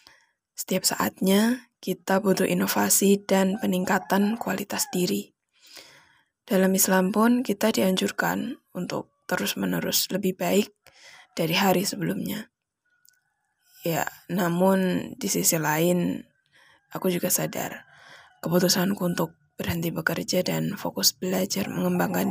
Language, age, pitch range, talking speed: Indonesian, 20-39, 170-200 Hz, 100 wpm